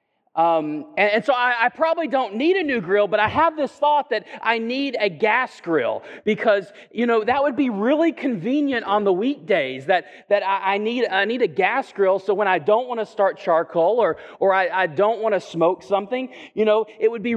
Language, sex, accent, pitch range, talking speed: English, male, American, 195-260 Hz, 230 wpm